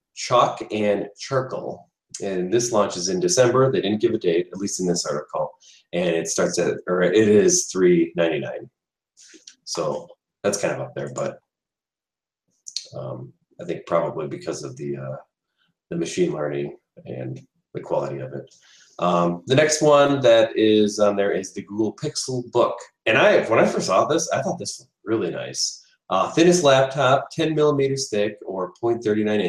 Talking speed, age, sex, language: 170 wpm, 30-49, male, English